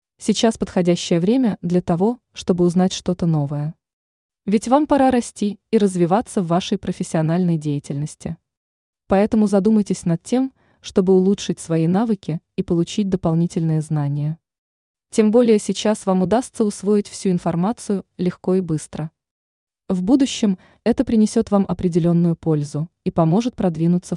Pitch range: 165-215 Hz